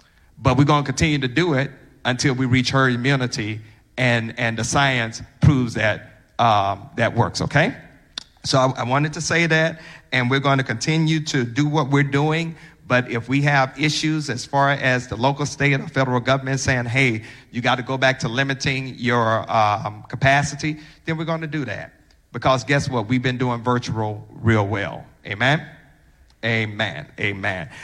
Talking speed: 180 wpm